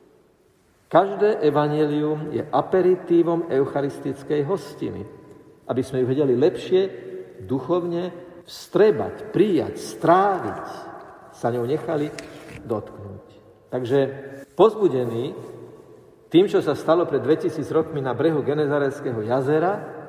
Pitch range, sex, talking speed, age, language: 125-170 Hz, male, 95 wpm, 50-69, Slovak